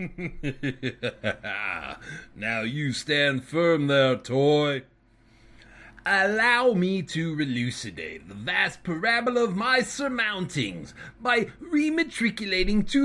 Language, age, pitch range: English, 30-49, 165-270 Hz